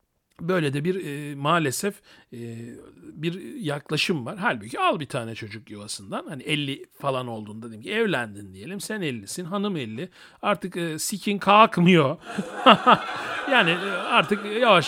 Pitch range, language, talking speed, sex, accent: 145-215 Hz, Turkish, 135 wpm, male, native